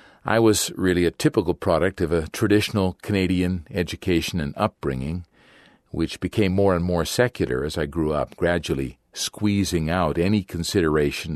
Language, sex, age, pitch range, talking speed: English, male, 50-69, 80-105 Hz, 150 wpm